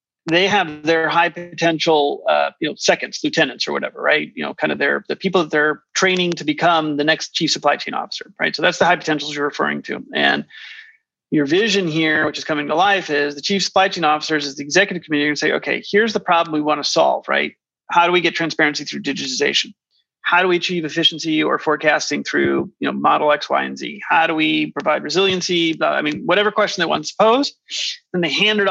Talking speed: 225 wpm